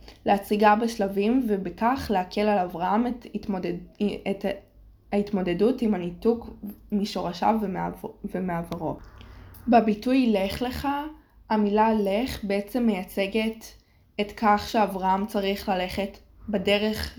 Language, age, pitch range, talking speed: Hebrew, 20-39, 185-225 Hz, 95 wpm